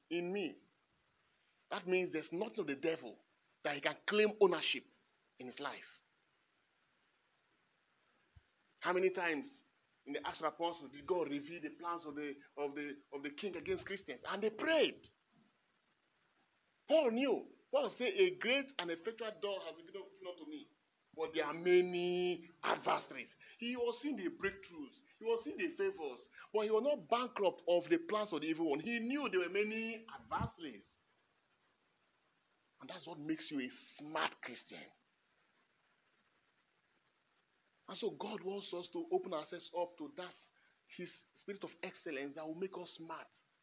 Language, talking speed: English, 160 wpm